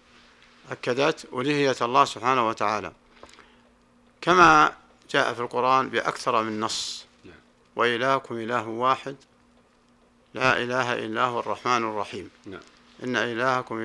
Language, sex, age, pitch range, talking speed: Arabic, male, 50-69, 120-145 Hz, 100 wpm